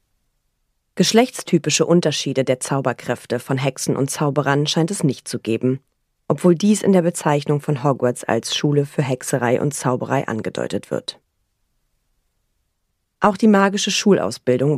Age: 30-49